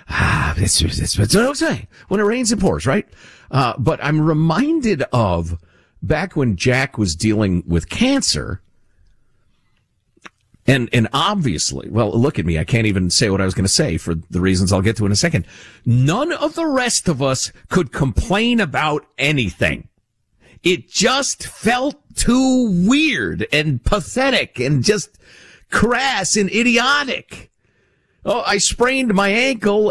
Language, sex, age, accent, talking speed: English, male, 50-69, American, 155 wpm